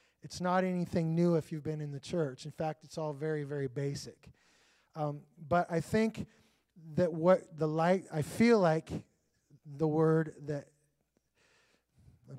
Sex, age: male, 20-39